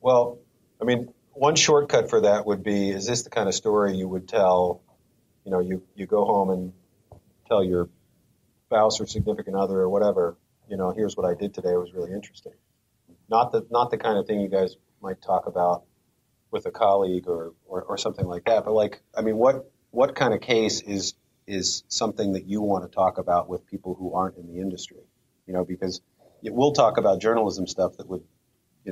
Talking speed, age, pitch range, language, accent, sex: 210 wpm, 40-59, 90-110 Hz, English, American, male